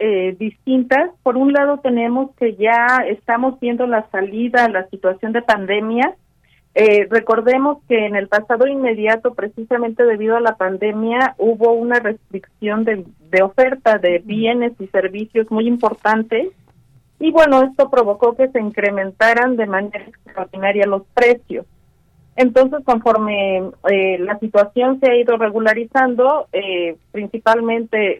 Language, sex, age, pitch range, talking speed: Spanish, female, 40-59, 205-250 Hz, 135 wpm